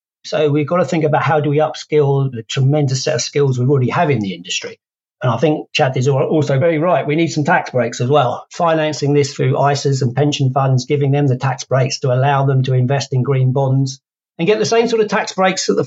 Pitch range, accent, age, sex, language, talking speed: 135-155 Hz, British, 50-69, male, English, 250 wpm